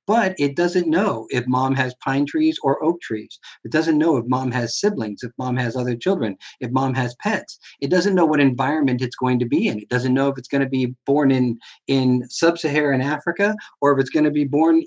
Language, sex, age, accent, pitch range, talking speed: English, male, 50-69, American, 120-150 Hz, 235 wpm